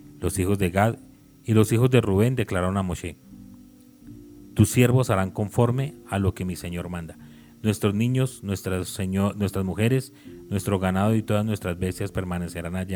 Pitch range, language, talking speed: 90-115 Hz, Spanish, 165 wpm